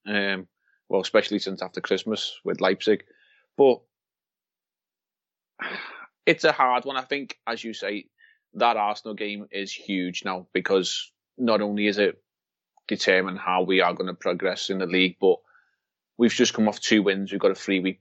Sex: male